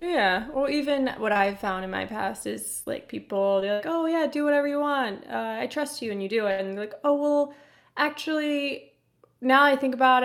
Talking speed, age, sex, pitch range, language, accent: 220 wpm, 20-39, female, 195-255 Hz, English, American